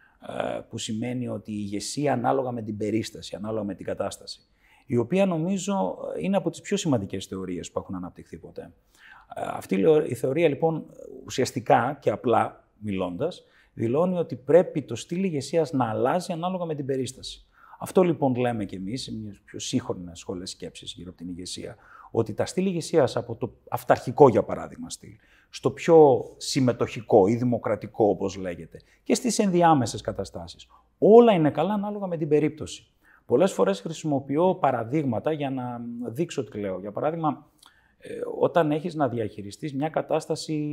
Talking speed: 155 wpm